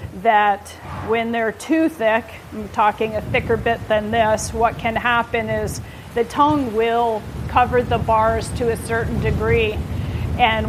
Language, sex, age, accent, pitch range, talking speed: English, female, 40-59, American, 210-235 Hz, 150 wpm